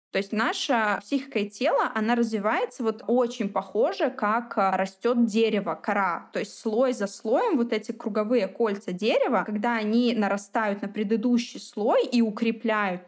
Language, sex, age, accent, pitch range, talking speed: Russian, female, 20-39, native, 200-240 Hz, 150 wpm